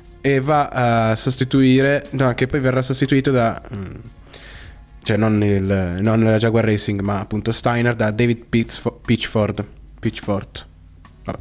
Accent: native